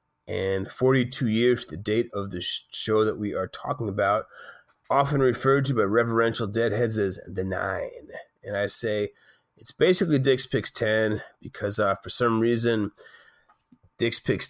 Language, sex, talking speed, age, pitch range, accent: English, male, 155 wpm, 30-49, 105-130 Hz, American